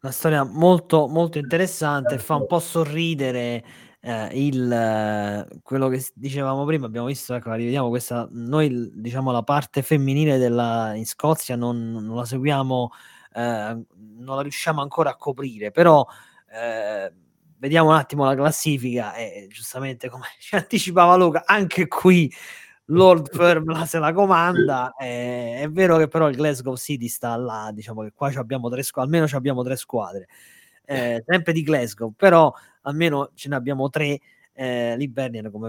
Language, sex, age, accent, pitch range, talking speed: Italian, male, 20-39, native, 115-150 Hz, 160 wpm